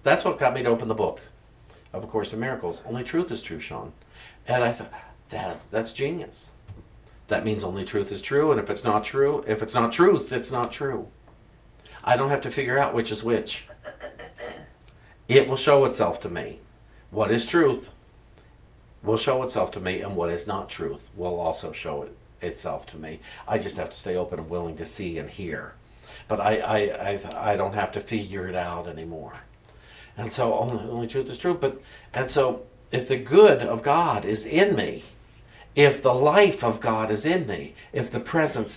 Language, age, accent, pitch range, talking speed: English, 50-69, American, 100-125 Hz, 200 wpm